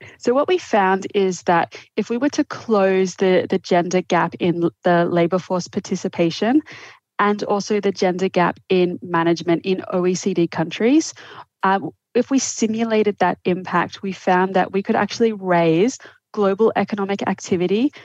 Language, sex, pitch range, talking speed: English, female, 175-205 Hz, 155 wpm